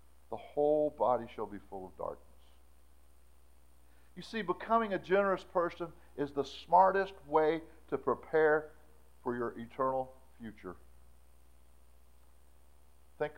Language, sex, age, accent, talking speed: English, male, 50-69, American, 110 wpm